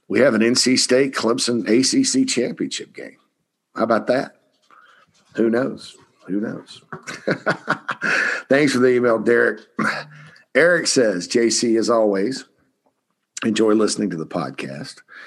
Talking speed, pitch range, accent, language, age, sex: 120 wpm, 100-120 Hz, American, English, 50-69, male